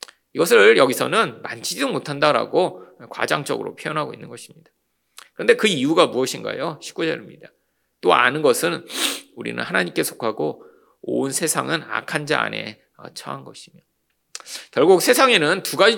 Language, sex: Korean, male